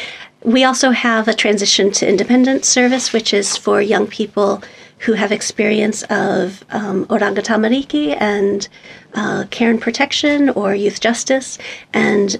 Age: 40-59